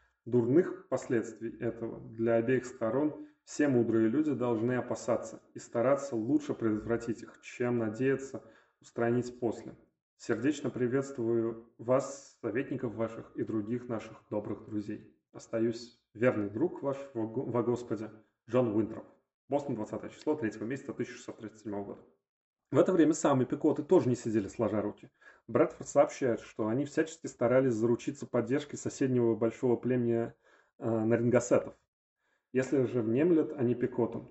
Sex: male